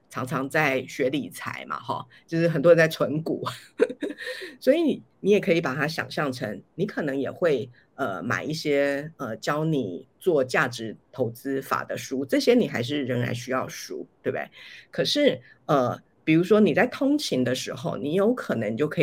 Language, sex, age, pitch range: Chinese, female, 50-69, 130-175 Hz